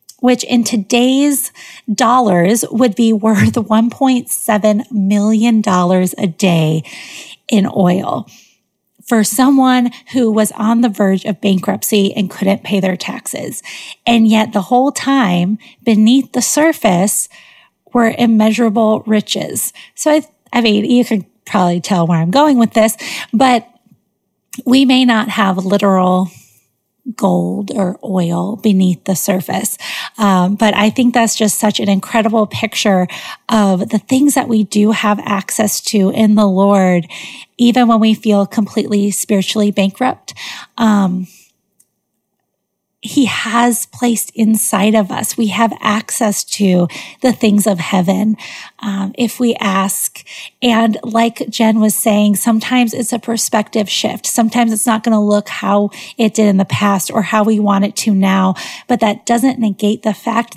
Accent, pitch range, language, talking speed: American, 200-235 Hz, English, 145 wpm